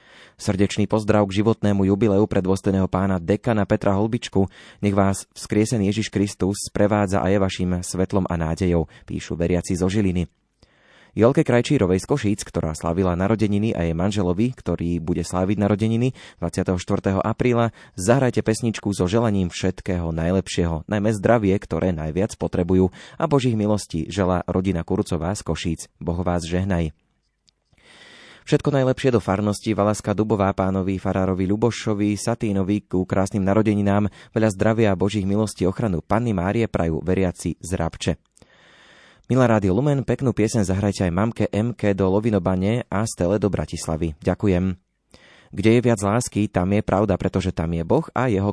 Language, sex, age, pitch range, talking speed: Slovak, male, 20-39, 90-110 Hz, 145 wpm